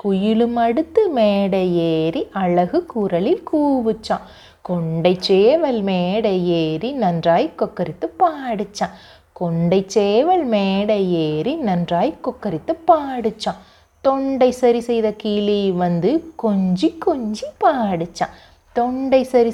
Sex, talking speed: female, 95 wpm